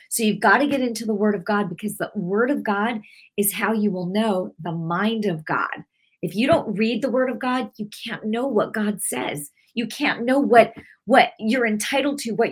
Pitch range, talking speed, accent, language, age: 195-240 Hz, 225 wpm, American, English, 40-59